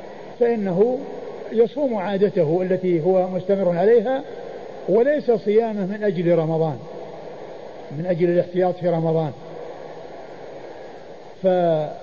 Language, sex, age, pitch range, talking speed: Arabic, male, 50-69, 175-210 Hz, 90 wpm